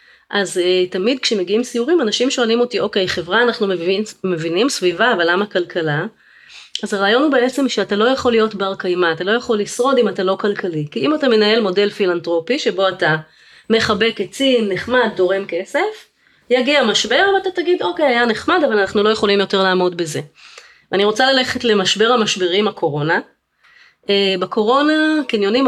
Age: 30-49